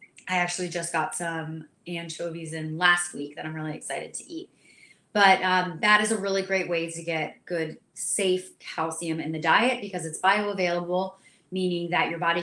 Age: 20-39